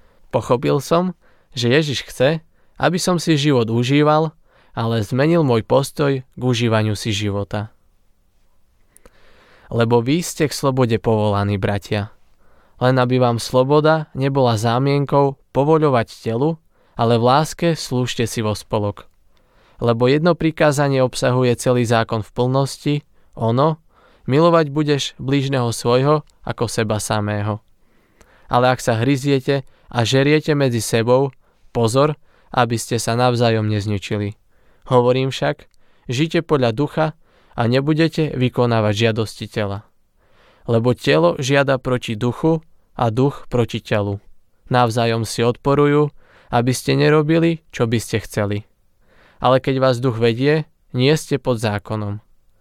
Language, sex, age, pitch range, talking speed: Slovak, male, 20-39, 115-140 Hz, 125 wpm